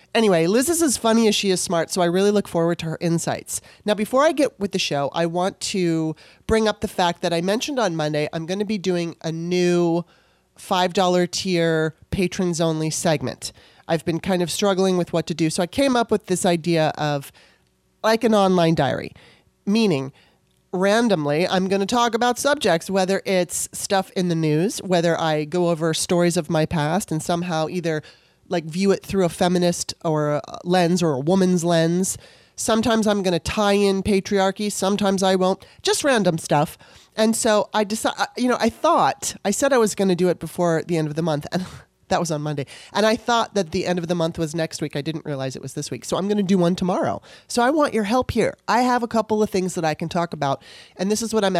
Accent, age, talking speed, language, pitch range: American, 30-49, 225 wpm, English, 165-205 Hz